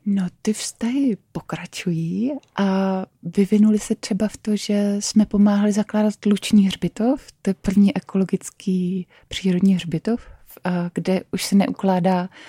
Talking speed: 125 wpm